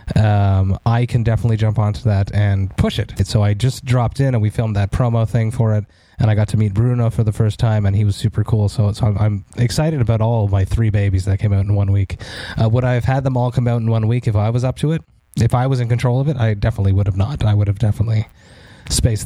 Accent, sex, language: American, male, English